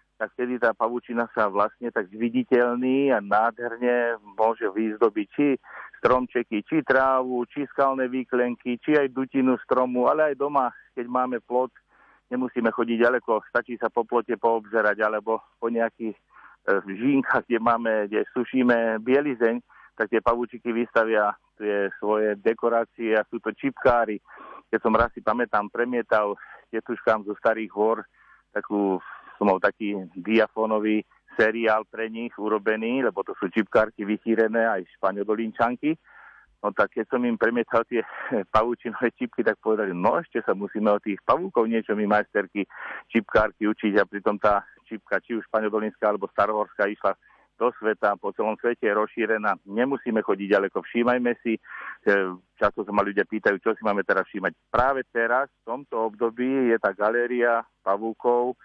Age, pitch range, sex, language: 40-59, 110-120 Hz, male, Slovak